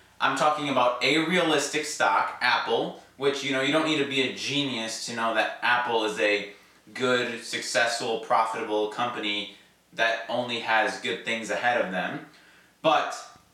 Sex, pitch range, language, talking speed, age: male, 115-150 Hz, English, 160 wpm, 20-39